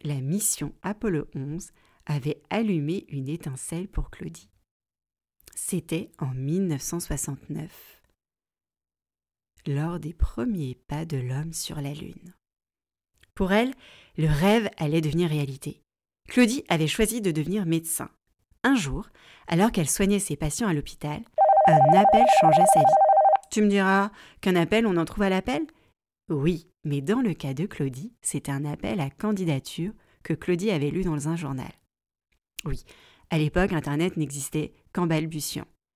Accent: French